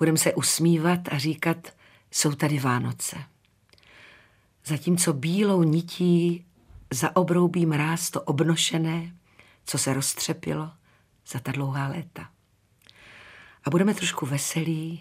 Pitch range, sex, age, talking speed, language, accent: 135-170 Hz, female, 50-69, 105 wpm, Czech, native